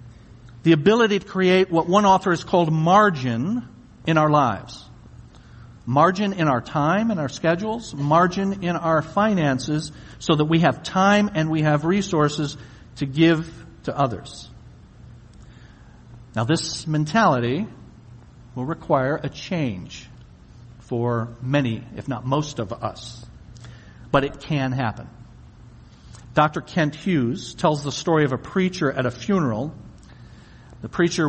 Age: 50-69